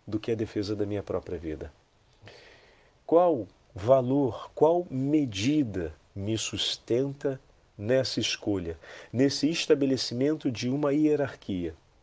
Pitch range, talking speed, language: 100-130 Hz, 105 wpm, Portuguese